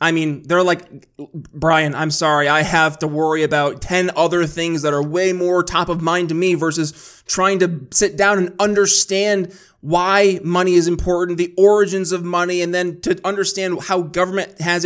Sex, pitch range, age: male, 165-195 Hz, 20-39